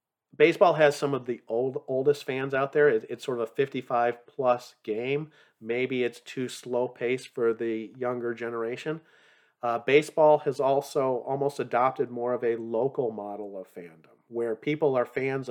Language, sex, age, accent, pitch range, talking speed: English, male, 40-59, American, 115-140 Hz, 165 wpm